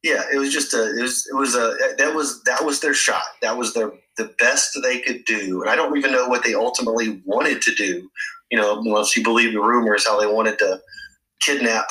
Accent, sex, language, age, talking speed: American, male, English, 30-49, 235 wpm